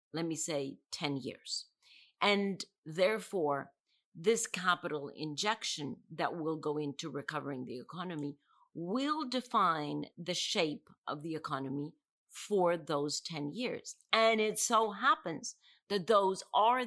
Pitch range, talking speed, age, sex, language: 150-195 Hz, 125 wpm, 50-69, female, English